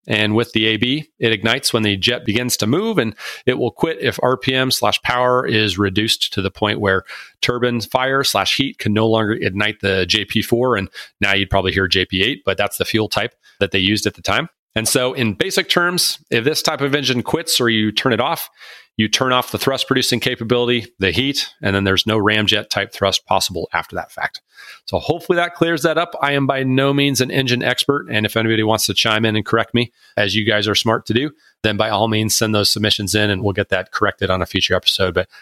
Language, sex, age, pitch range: English, male, 40-59, 105-140 Hz